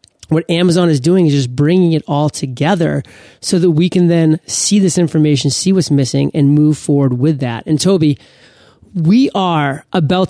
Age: 30-49